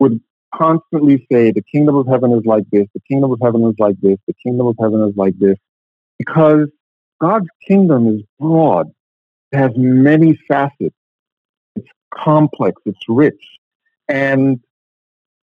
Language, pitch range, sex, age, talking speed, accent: English, 105-140 Hz, male, 50-69, 145 wpm, American